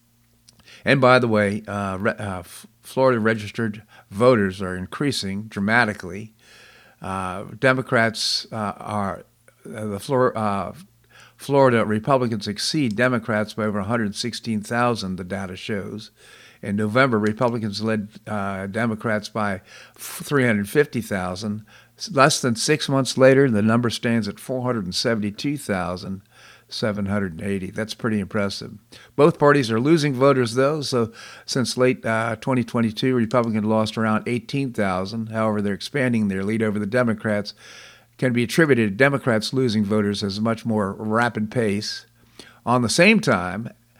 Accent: American